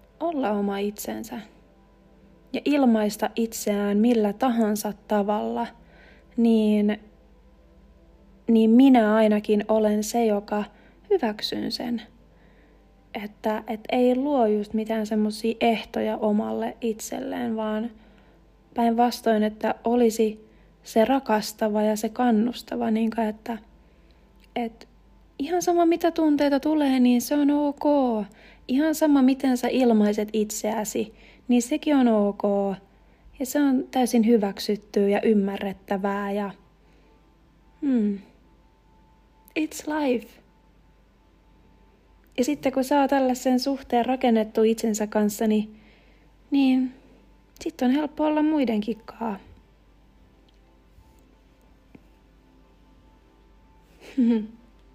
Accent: native